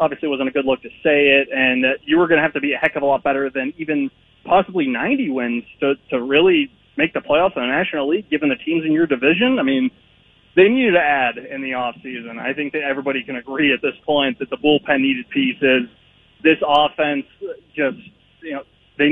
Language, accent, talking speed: English, American, 235 wpm